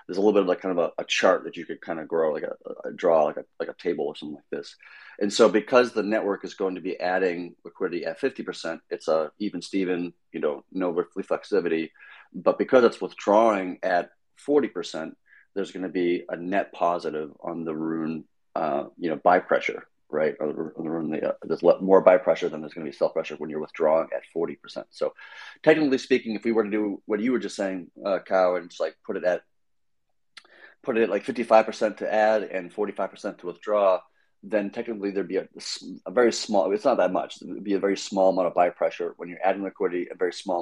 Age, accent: 30-49, American